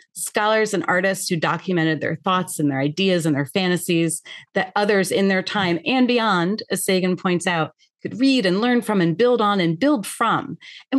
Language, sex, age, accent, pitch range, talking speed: English, female, 40-59, American, 170-220 Hz, 195 wpm